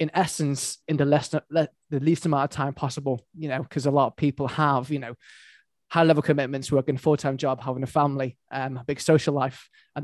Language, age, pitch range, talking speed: English, 20-39, 135-150 Hz, 215 wpm